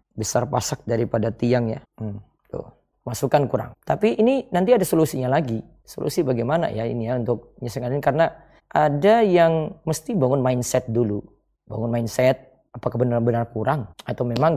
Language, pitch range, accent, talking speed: Indonesian, 120-160 Hz, native, 145 wpm